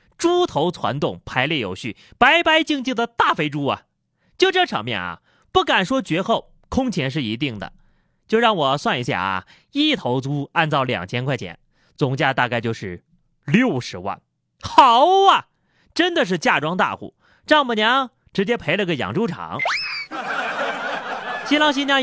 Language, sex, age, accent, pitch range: Chinese, male, 30-49, native, 150-245 Hz